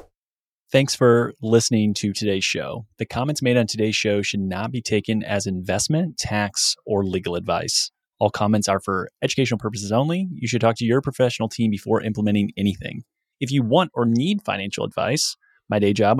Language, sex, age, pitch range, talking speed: English, male, 20-39, 105-125 Hz, 180 wpm